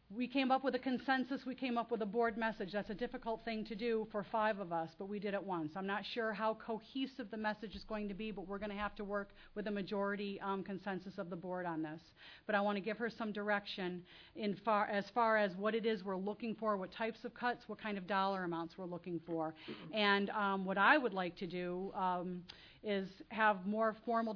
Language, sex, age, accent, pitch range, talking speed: English, female, 40-59, American, 185-220 Hz, 245 wpm